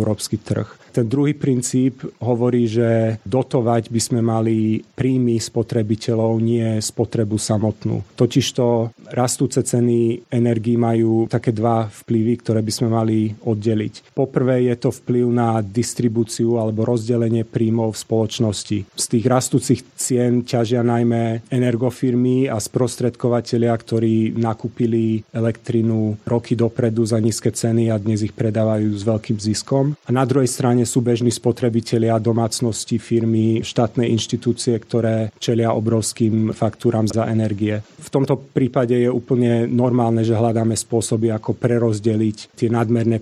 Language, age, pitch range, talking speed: Slovak, 30-49, 115-125 Hz, 130 wpm